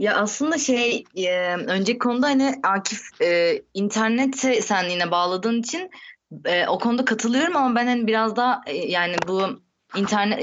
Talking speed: 155 wpm